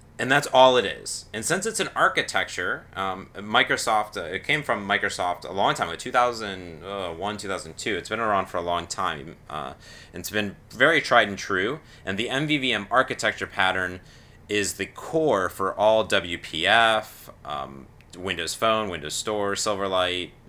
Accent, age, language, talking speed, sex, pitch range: American, 30-49, English, 165 wpm, male, 95-120 Hz